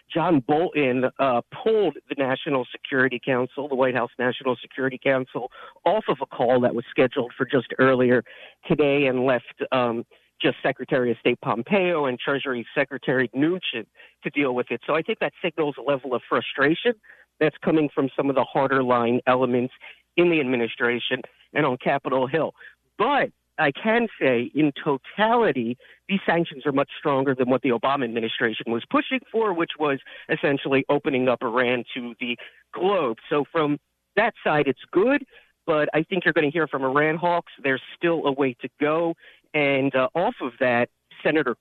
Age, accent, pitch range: 50-69, American, 125-155 Hz